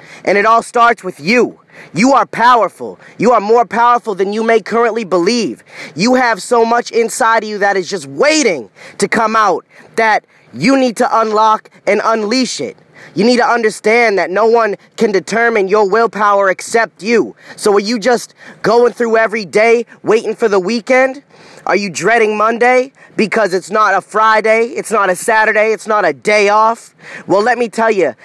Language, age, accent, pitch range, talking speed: English, 20-39, American, 210-235 Hz, 185 wpm